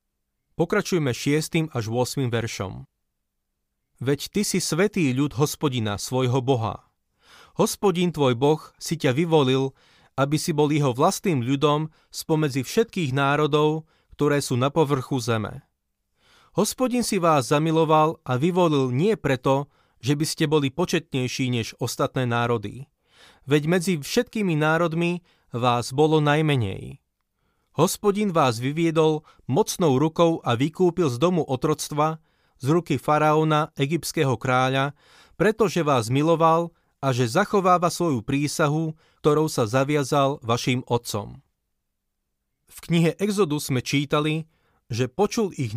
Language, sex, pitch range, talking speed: Slovak, male, 130-165 Hz, 120 wpm